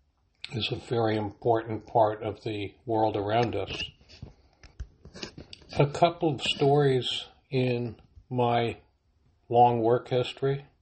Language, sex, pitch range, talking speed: English, male, 100-125 Hz, 105 wpm